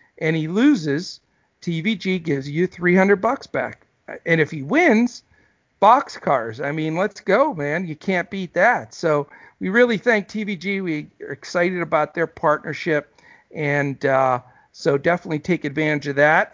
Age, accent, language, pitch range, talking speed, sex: 50-69, American, English, 155-190 Hz, 150 wpm, male